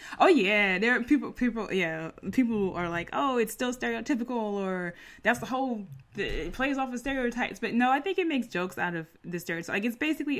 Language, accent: English, American